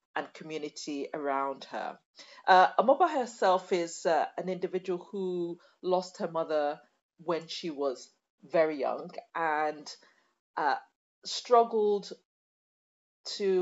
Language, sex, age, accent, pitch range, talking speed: English, female, 40-59, British, 155-190 Hz, 105 wpm